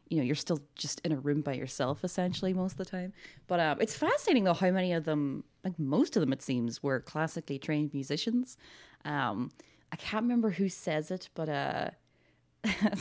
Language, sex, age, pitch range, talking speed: English, female, 20-39, 145-190 Hz, 205 wpm